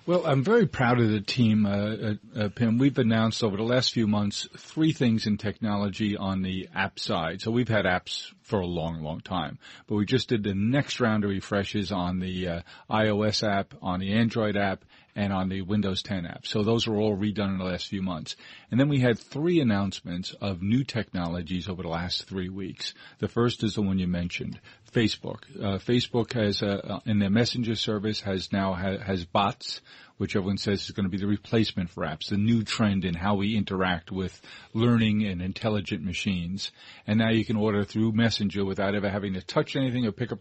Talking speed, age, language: 210 wpm, 40-59, English